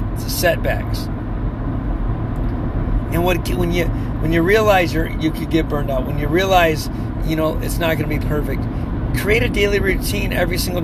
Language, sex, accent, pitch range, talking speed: English, male, American, 115-155 Hz, 175 wpm